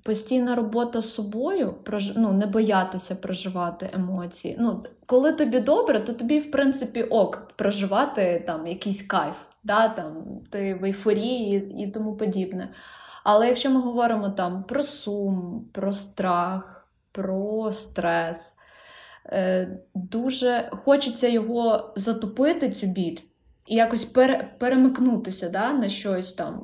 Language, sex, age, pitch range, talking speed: Ukrainian, female, 20-39, 190-235 Hz, 125 wpm